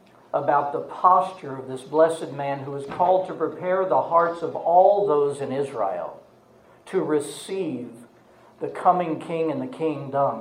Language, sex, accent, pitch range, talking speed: English, male, American, 145-180 Hz, 155 wpm